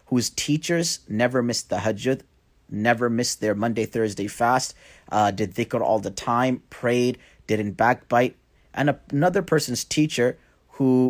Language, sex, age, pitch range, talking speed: English, male, 30-49, 115-145 Hz, 140 wpm